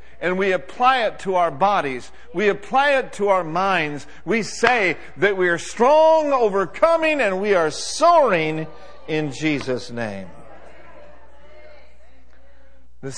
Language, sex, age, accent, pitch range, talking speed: English, male, 60-79, American, 120-190 Hz, 125 wpm